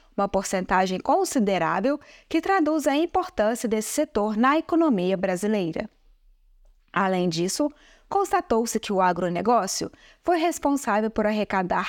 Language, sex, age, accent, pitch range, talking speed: Portuguese, female, 20-39, Brazilian, 200-305 Hz, 105 wpm